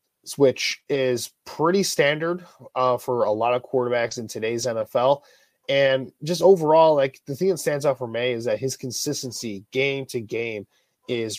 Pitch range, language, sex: 115-140 Hz, English, male